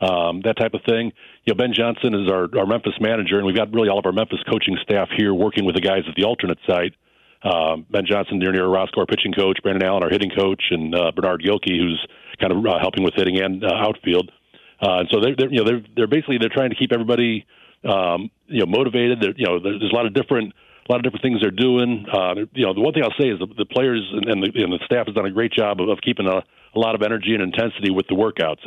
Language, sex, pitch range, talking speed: English, male, 95-125 Hz, 270 wpm